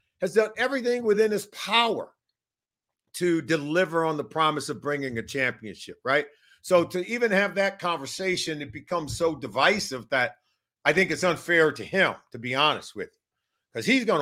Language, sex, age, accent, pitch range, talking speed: English, male, 50-69, American, 140-200 Hz, 175 wpm